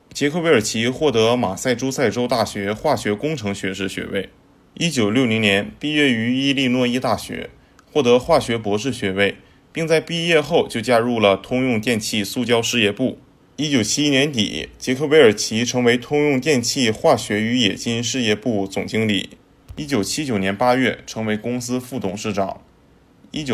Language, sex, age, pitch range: Chinese, male, 20-39, 100-130 Hz